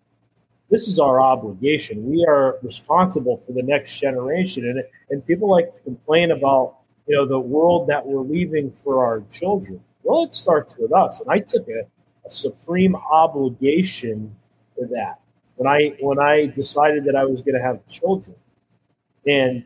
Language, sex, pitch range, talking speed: English, male, 130-165 Hz, 170 wpm